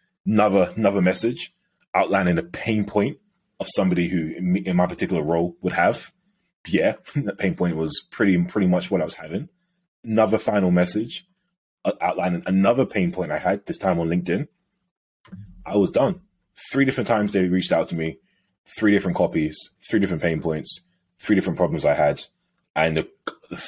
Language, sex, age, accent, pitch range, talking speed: English, male, 20-39, British, 85-110 Hz, 170 wpm